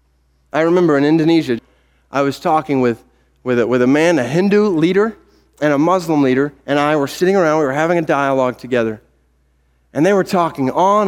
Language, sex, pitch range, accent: Korean, male, 130-210 Hz, American